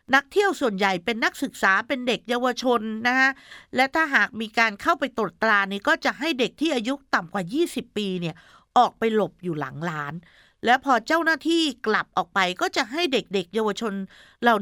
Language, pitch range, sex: Thai, 220-285 Hz, female